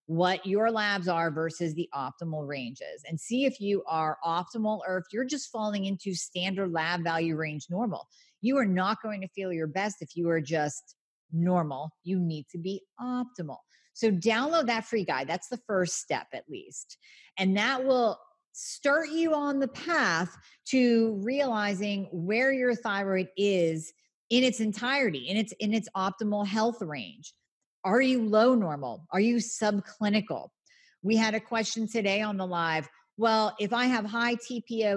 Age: 40-59